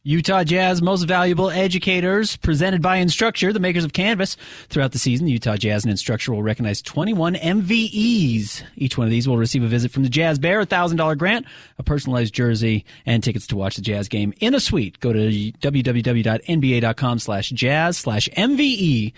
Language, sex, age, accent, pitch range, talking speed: English, male, 30-49, American, 110-150 Hz, 170 wpm